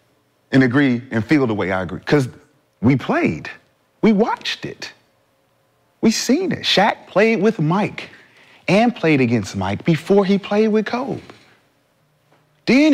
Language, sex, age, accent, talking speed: English, male, 40-59, American, 145 wpm